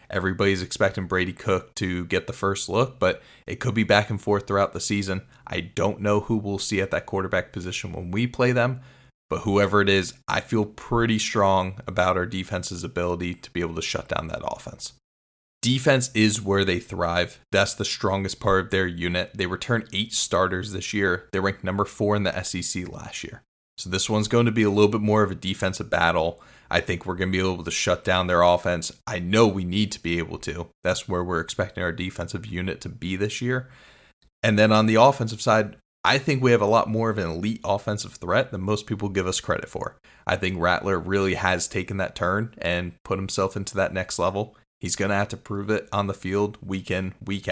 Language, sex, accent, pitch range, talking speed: English, male, American, 90-110 Hz, 225 wpm